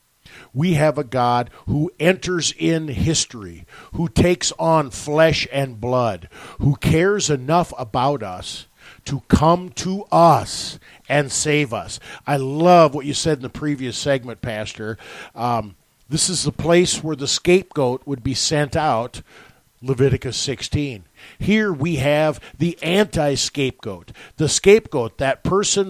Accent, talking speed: American, 135 wpm